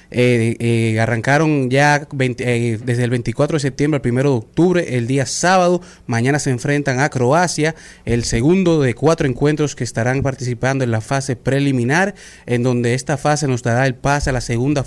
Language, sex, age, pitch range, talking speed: Spanish, male, 30-49, 120-140 Hz, 185 wpm